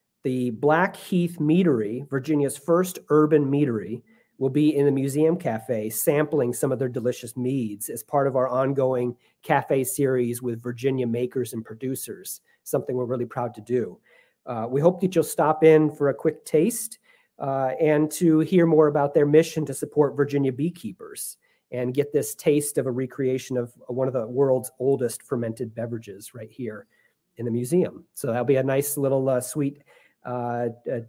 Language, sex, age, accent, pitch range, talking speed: English, male, 40-59, American, 125-155 Hz, 175 wpm